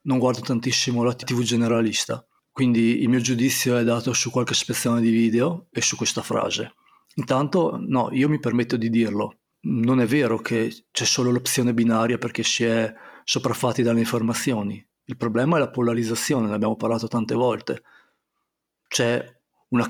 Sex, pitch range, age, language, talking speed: male, 115-130 Hz, 40-59, Italian, 165 wpm